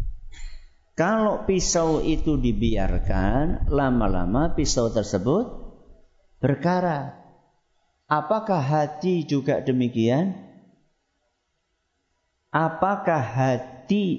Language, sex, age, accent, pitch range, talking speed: Italian, male, 50-69, Indonesian, 100-145 Hz, 60 wpm